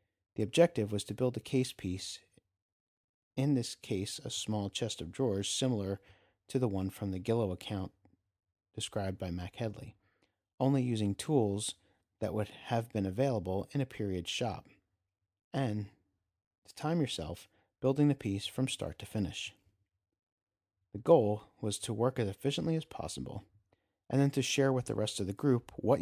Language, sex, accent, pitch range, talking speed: English, male, American, 95-125 Hz, 165 wpm